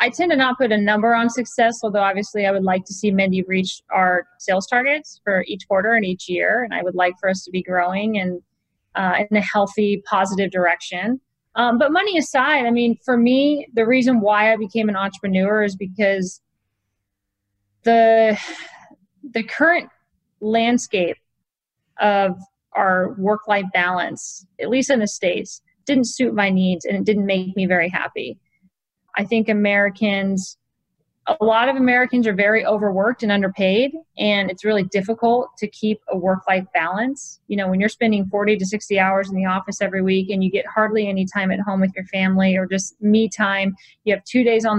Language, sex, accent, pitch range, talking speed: English, female, American, 190-230 Hz, 185 wpm